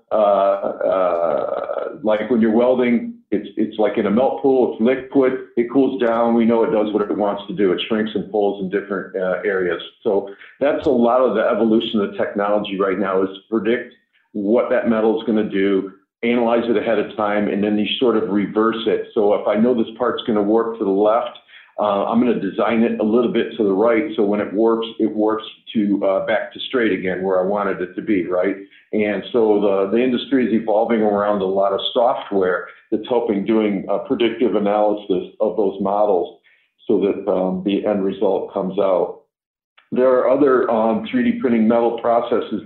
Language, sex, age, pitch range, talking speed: English, male, 50-69, 100-120 Hz, 210 wpm